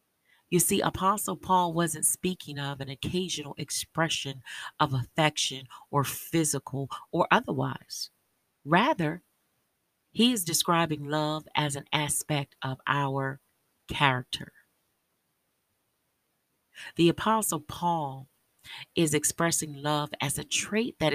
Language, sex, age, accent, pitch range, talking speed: English, female, 40-59, American, 140-170 Hz, 105 wpm